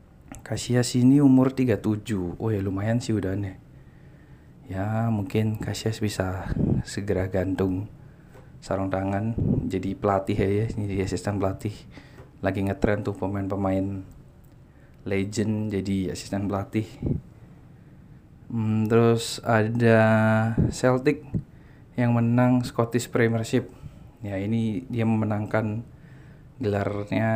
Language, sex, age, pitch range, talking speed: Indonesian, male, 20-39, 95-115 Hz, 100 wpm